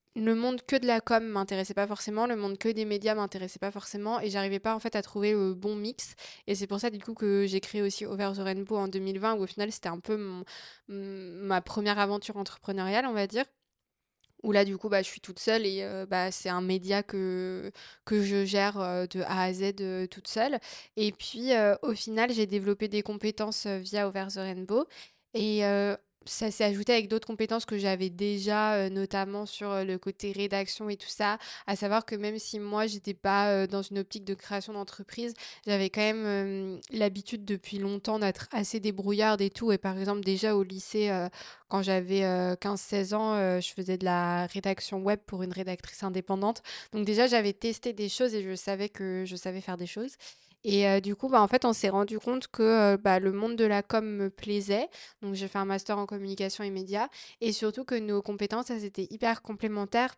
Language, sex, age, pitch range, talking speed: French, female, 20-39, 195-215 Hz, 220 wpm